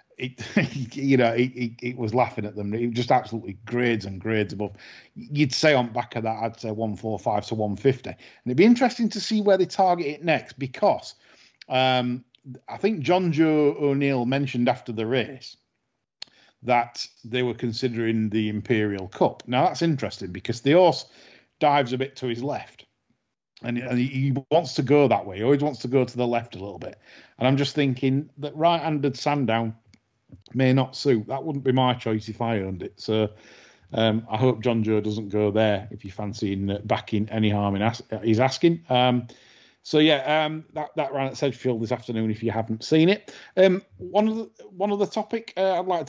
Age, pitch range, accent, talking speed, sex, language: 40-59, 110-140 Hz, British, 200 wpm, male, English